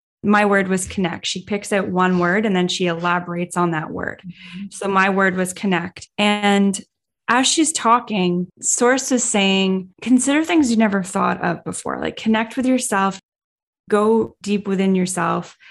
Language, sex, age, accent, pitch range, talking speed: English, female, 10-29, American, 185-230 Hz, 165 wpm